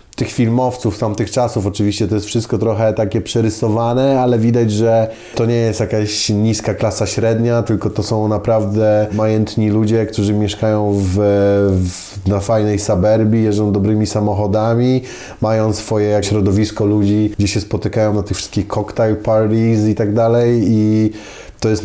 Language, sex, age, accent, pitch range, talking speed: Polish, male, 20-39, native, 105-115 Hz, 150 wpm